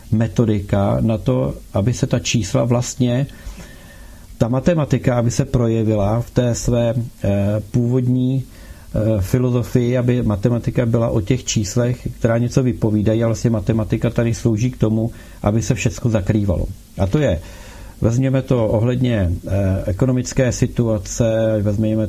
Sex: male